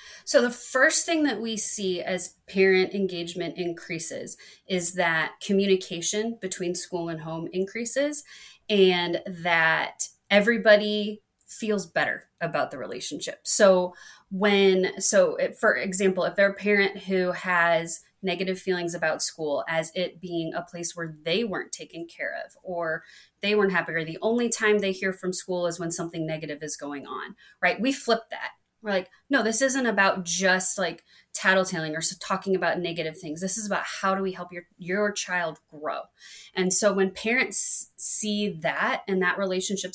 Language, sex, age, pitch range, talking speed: English, female, 20-39, 175-215 Hz, 165 wpm